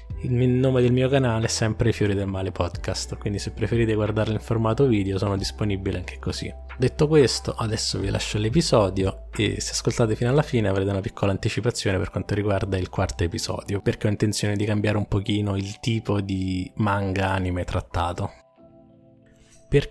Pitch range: 95-120 Hz